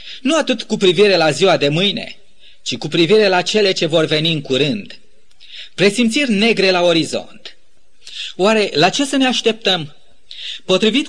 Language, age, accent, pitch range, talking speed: Romanian, 30-49, native, 180-235 Hz, 155 wpm